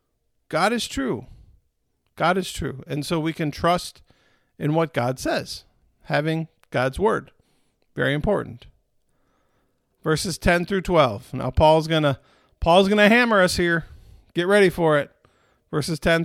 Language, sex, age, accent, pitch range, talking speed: English, male, 50-69, American, 145-190 Hz, 150 wpm